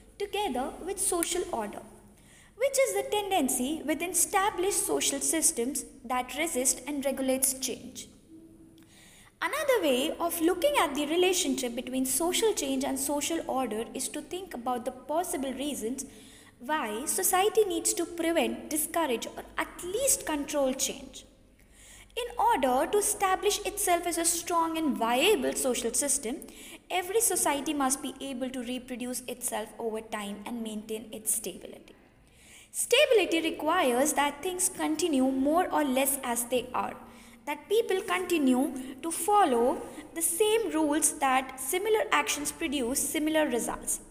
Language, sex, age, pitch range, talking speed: English, female, 20-39, 255-355 Hz, 135 wpm